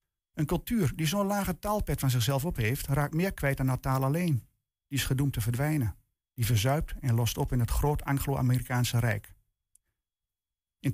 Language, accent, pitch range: Dutch, Dutch, 110-145 Hz